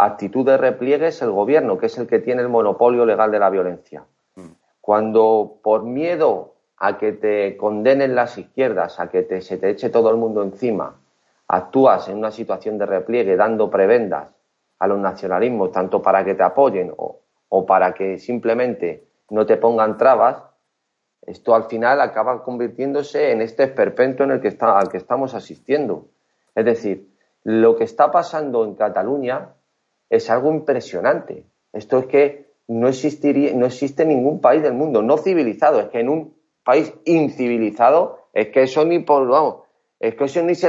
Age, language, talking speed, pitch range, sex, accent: 40-59, Spanish, 165 wpm, 115-155 Hz, male, Spanish